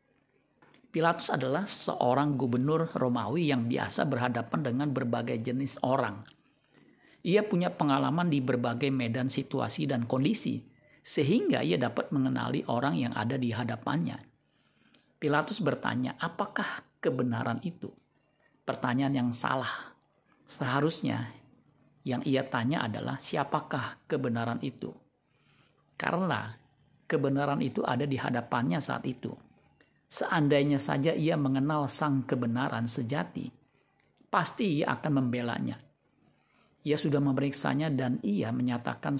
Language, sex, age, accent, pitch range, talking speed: Indonesian, male, 50-69, native, 125-155 Hz, 110 wpm